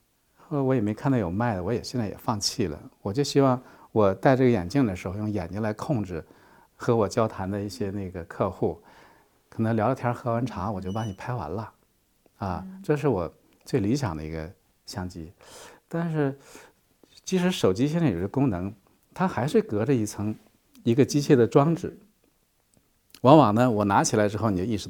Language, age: Chinese, 50-69